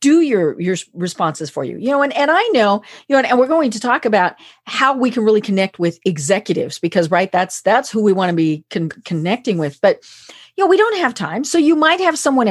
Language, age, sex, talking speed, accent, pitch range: English, 40-59, female, 245 wpm, American, 185-265 Hz